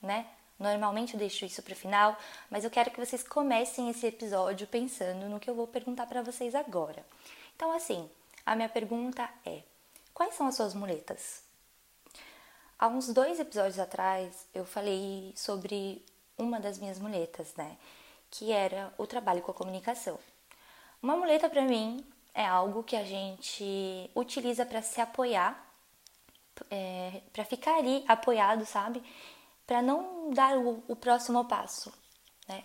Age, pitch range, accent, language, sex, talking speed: 20-39, 205-265 Hz, Brazilian, Portuguese, female, 150 wpm